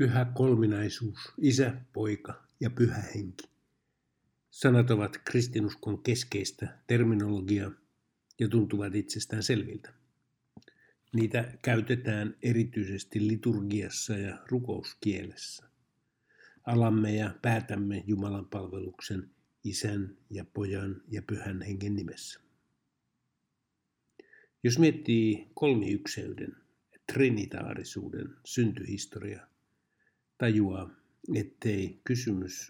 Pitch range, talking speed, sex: 100-120 Hz, 75 wpm, male